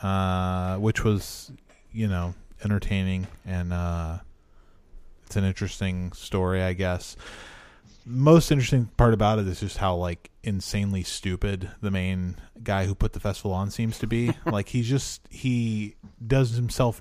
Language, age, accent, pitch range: English, 20-39, American, 95-115 Hz